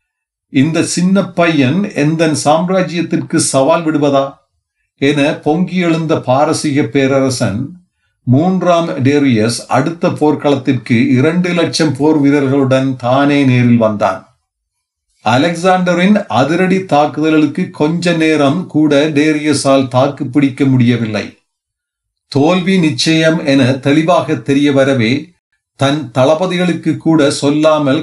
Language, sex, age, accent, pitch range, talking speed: Tamil, male, 40-59, native, 130-160 Hz, 80 wpm